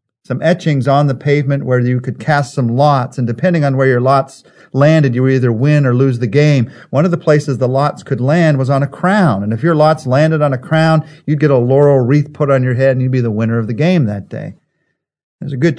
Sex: male